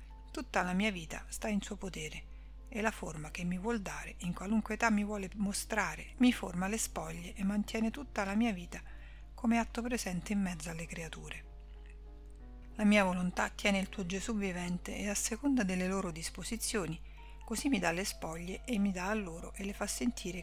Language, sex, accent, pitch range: Italian, female, native, 175-215 Hz